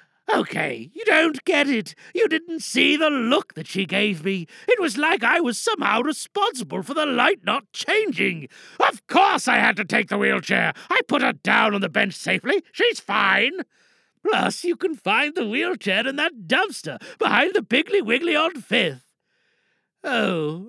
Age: 50-69